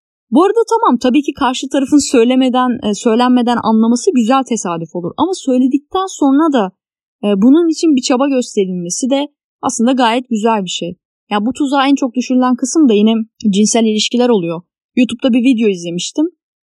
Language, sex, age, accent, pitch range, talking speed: Turkish, female, 10-29, native, 215-275 Hz, 160 wpm